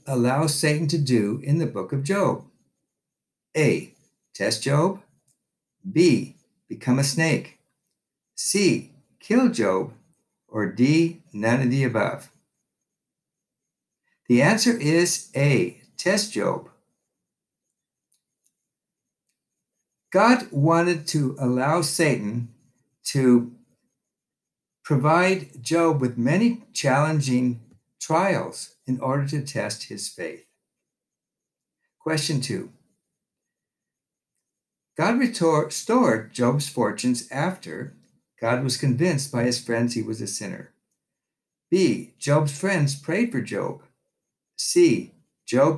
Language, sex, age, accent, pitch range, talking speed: English, male, 60-79, American, 125-175 Hz, 95 wpm